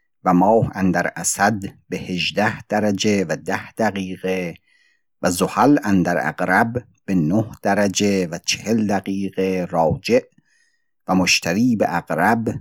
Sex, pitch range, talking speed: male, 95-115 Hz, 130 wpm